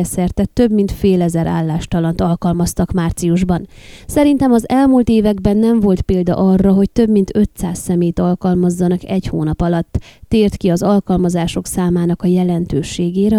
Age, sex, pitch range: 20-39, female, 180-210 Hz